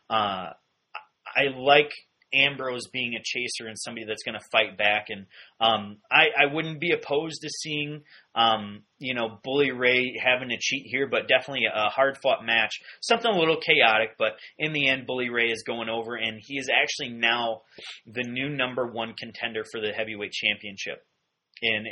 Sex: male